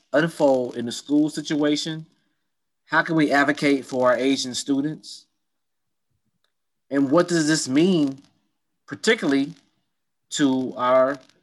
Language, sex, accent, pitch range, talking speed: English, male, American, 135-170 Hz, 110 wpm